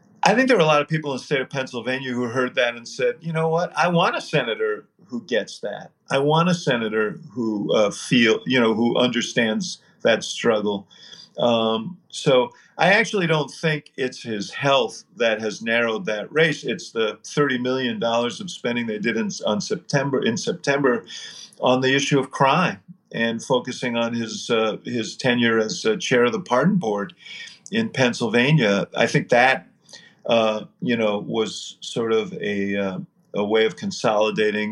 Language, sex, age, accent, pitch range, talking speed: English, male, 50-69, American, 110-155 Hz, 180 wpm